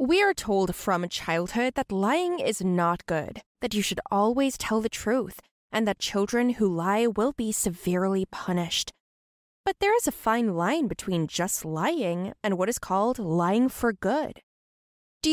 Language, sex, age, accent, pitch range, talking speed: English, female, 20-39, American, 180-270 Hz, 170 wpm